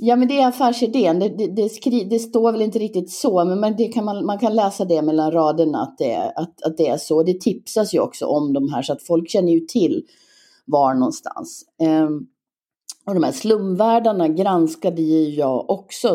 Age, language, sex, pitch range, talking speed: 30-49, Swedish, female, 150-210 Hz, 210 wpm